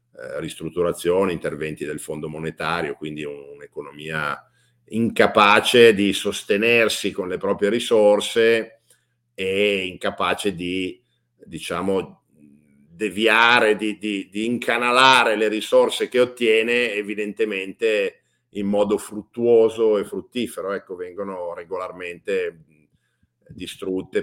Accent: native